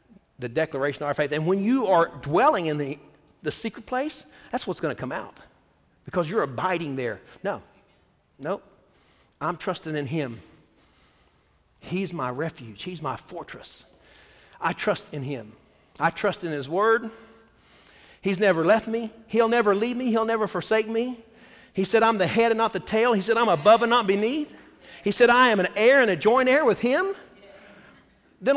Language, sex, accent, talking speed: English, male, American, 185 wpm